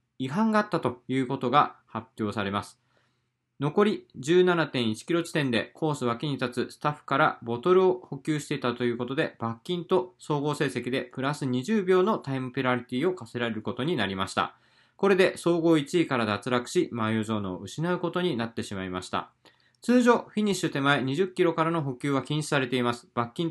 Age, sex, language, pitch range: 20-39, male, Japanese, 120-170 Hz